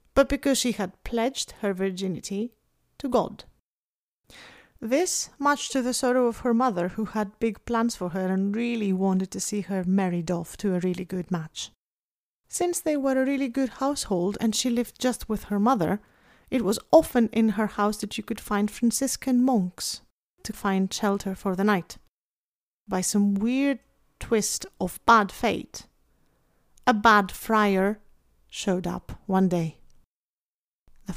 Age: 30-49